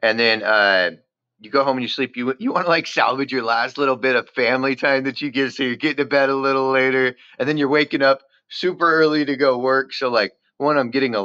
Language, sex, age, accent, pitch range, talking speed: English, male, 30-49, American, 115-140 Hz, 260 wpm